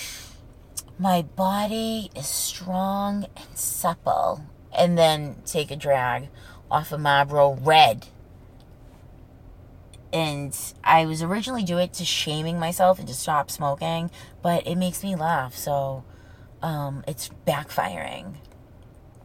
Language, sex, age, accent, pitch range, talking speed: English, female, 20-39, American, 135-205 Hz, 115 wpm